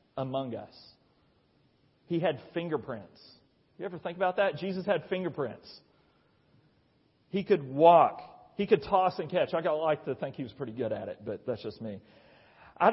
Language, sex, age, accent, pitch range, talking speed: English, male, 40-59, American, 125-170 Hz, 165 wpm